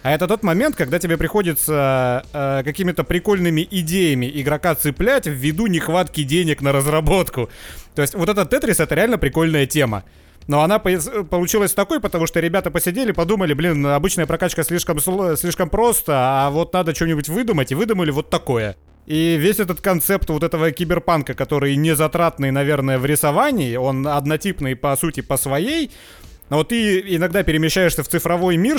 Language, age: Russian, 30-49